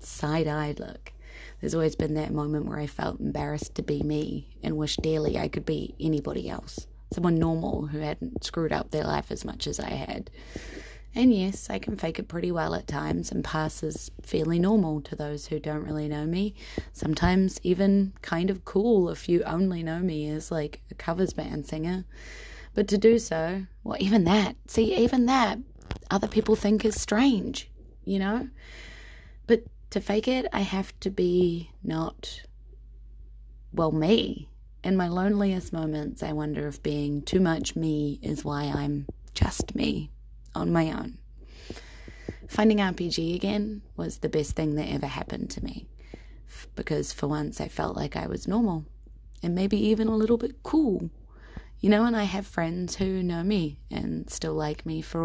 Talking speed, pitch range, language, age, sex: 175 wpm, 150-200 Hz, English, 20-39, female